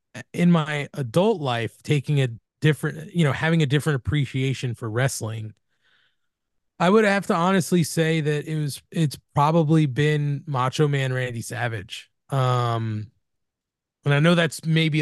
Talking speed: 150 wpm